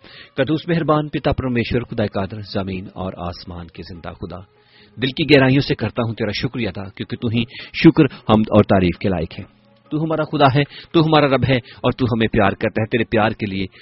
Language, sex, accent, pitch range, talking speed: English, male, Indian, 100-125 Hz, 210 wpm